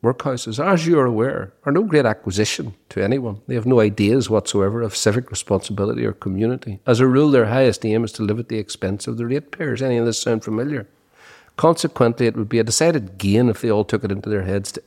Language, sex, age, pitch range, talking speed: English, male, 50-69, 100-125 Hz, 230 wpm